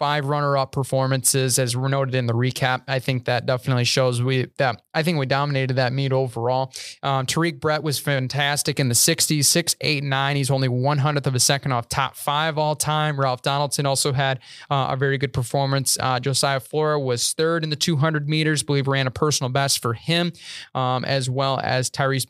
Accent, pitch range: American, 130-150 Hz